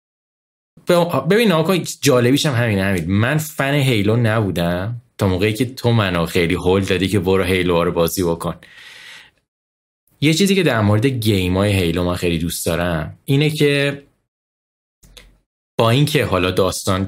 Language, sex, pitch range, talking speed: Persian, male, 95-125 Hz, 150 wpm